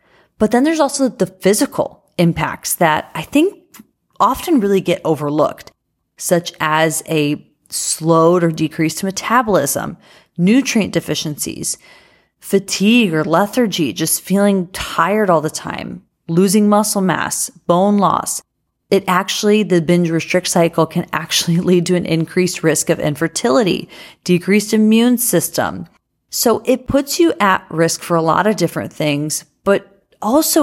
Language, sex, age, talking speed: English, female, 30-49, 135 wpm